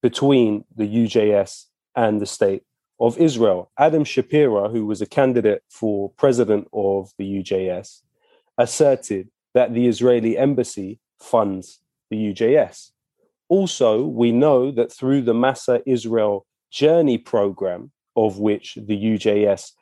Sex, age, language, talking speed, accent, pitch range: male, 30-49, English, 125 wpm, British, 105-135 Hz